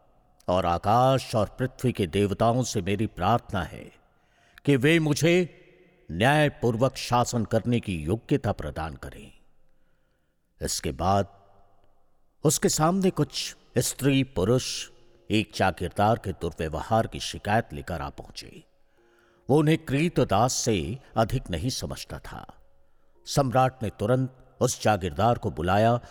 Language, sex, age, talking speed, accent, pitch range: Hindi, male, 60-79, 115 wpm, native, 100-140 Hz